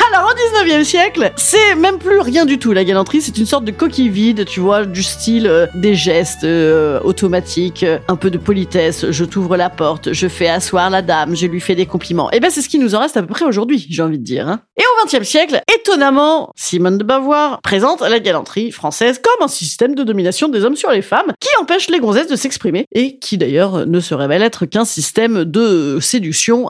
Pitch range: 185-280 Hz